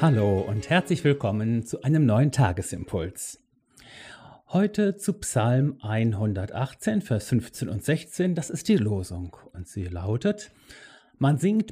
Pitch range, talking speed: 115-160 Hz, 130 wpm